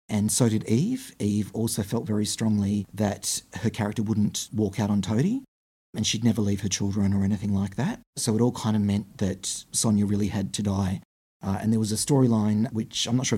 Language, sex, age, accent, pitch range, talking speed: English, male, 30-49, Australian, 105-115 Hz, 220 wpm